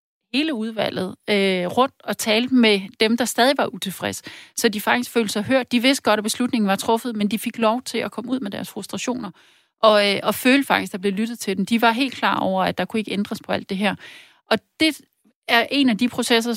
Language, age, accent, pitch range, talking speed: Danish, 30-49, native, 200-235 Hz, 245 wpm